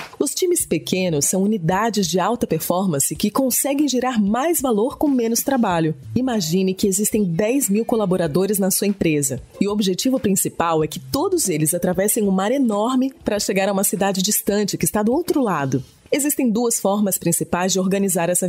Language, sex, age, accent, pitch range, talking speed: Portuguese, female, 20-39, Brazilian, 185-255 Hz, 180 wpm